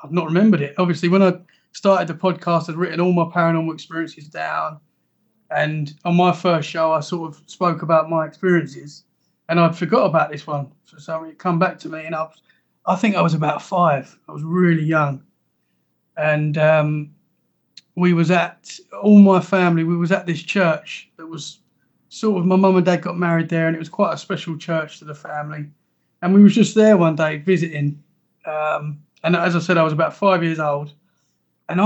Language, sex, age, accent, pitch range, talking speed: English, male, 30-49, British, 160-185 Hz, 205 wpm